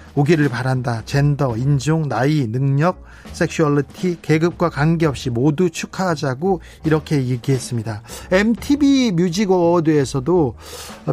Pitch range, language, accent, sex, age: 130-180 Hz, Korean, native, male, 40-59